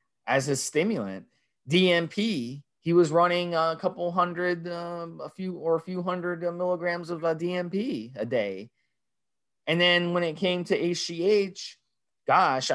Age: 20-39